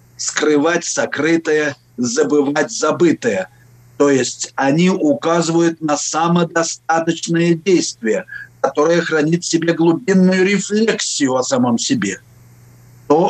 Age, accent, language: 50-69, native, Russian